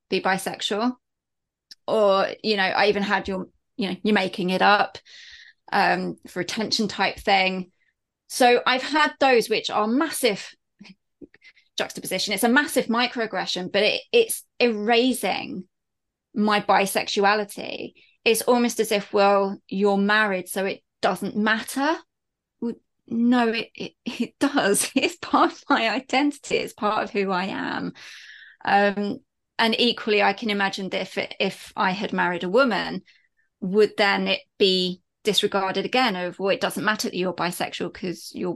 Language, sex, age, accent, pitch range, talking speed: English, female, 20-39, British, 190-240 Hz, 150 wpm